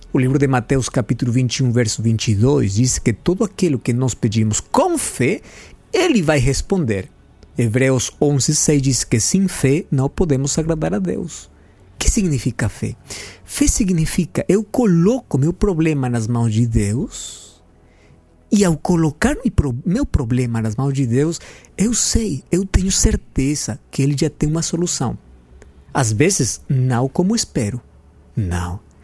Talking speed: 150 wpm